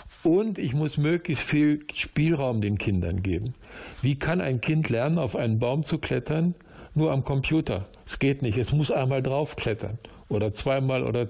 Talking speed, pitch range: 170 wpm, 120-155 Hz